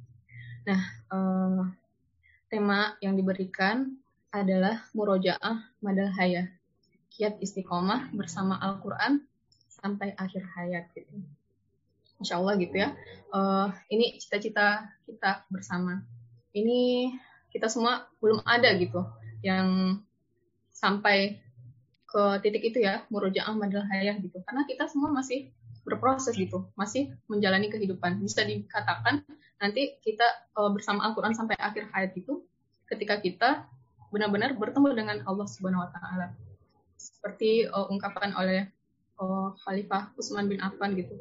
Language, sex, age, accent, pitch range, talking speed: Indonesian, female, 20-39, native, 180-215 Hz, 115 wpm